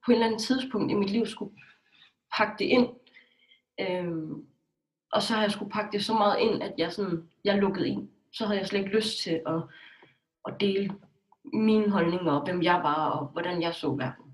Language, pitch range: English, 170-215 Hz